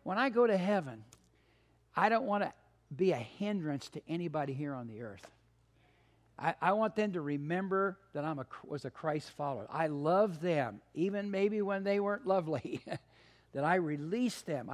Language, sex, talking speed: English, male, 180 wpm